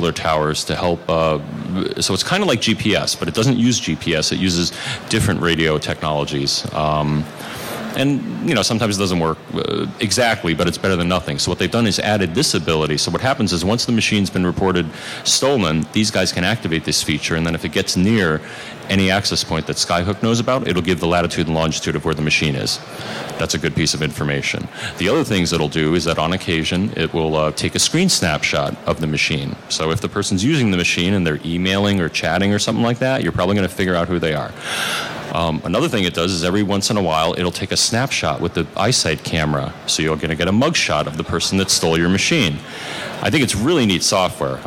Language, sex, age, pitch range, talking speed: English, male, 30-49, 80-100 Hz, 230 wpm